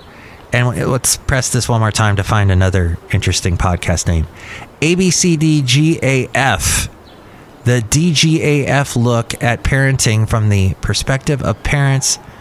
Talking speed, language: 115 wpm, English